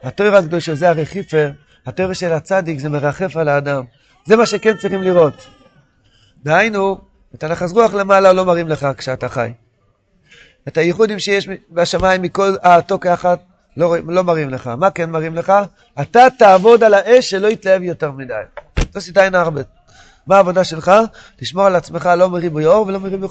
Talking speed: 165 wpm